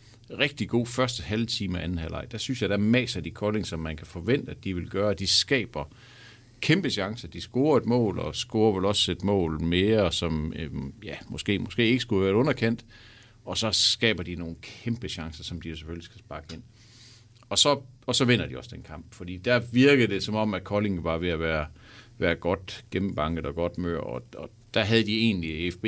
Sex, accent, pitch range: male, native, 90-115 Hz